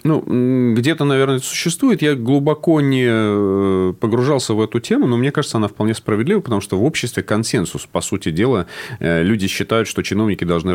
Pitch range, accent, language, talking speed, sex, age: 85-115 Hz, native, Russian, 165 wpm, male, 30-49